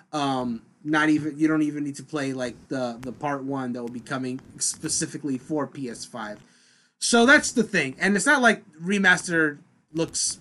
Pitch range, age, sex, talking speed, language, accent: 130-160 Hz, 30-49, male, 180 wpm, English, American